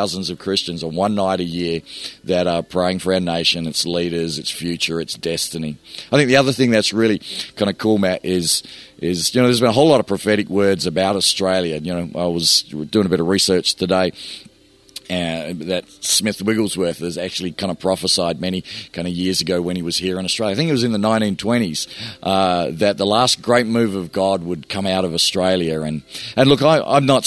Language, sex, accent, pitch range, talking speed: English, male, Australian, 90-110 Hz, 220 wpm